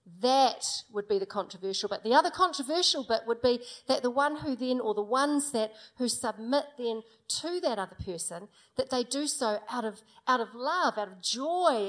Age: 40-59